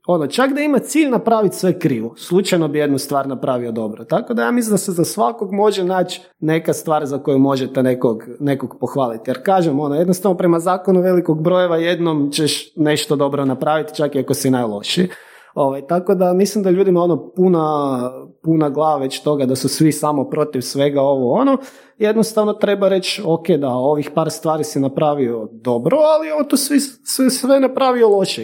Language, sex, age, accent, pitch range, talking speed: Croatian, male, 30-49, native, 140-195 Hz, 190 wpm